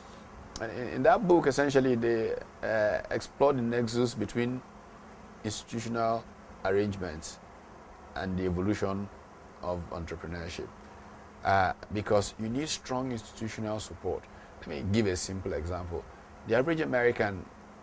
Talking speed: 110 wpm